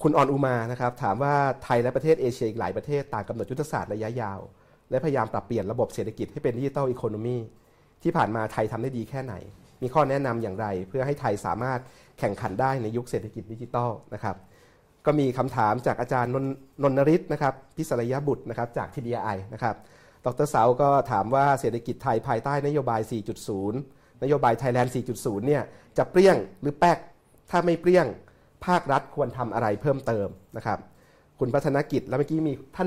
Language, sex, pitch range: Thai, male, 110-140 Hz